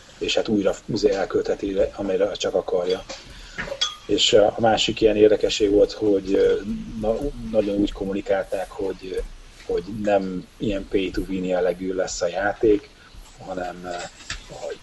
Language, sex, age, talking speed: Hungarian, male, 30-49, 115 wpm